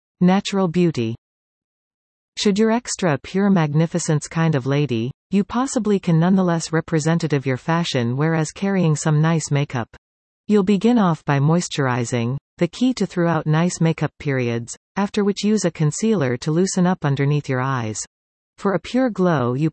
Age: 40-59